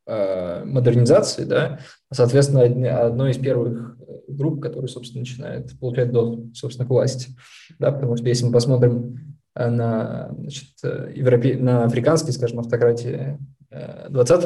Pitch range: 120-140 Hz